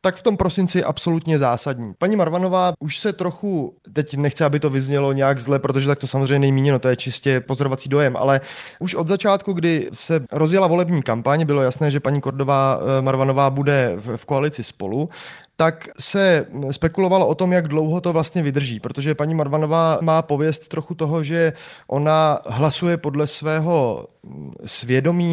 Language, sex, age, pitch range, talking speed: Czech, male, 30-49, 135-165 Hz, 165 wpm